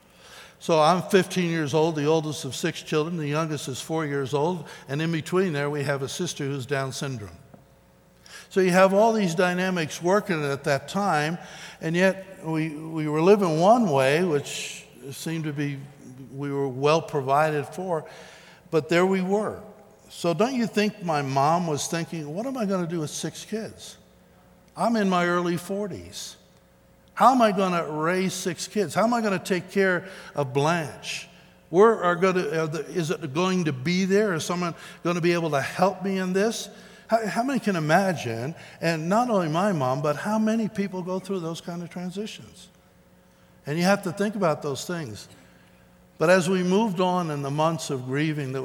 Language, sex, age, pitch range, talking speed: English, male, 60-79, 145-185 Hz, 195 wpm